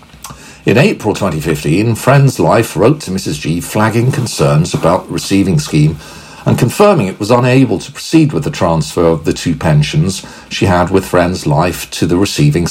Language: English